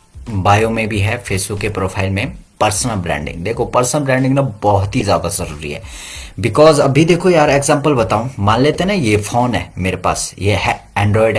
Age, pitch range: 30-49, 95-130 Hz